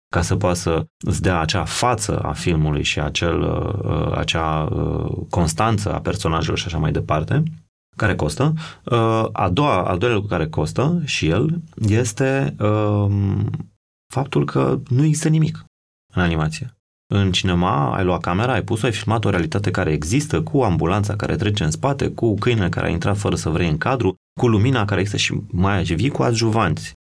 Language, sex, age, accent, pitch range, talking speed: Romanian, male, 30-49, native, 90-130 Hz, 170 wpm